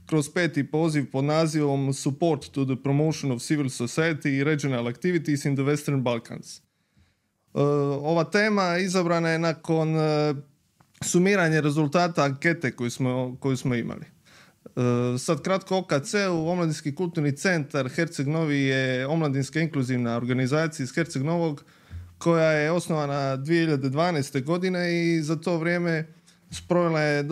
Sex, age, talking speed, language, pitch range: male, 20-39, 125 wpm, English, 140-165 Hz